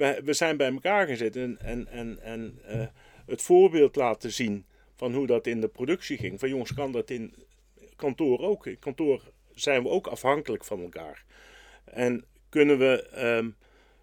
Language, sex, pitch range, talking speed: Dutch, male, 115-150 Hz, 170 wpm